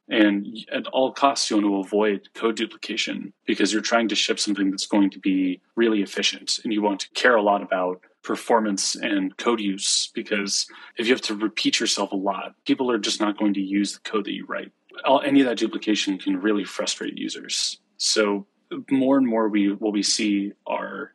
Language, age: English, 30-49